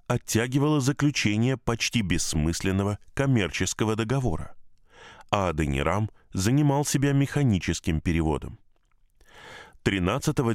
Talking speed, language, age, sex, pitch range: 75 wpm, Russian, 20-39, male, 90-120 Hz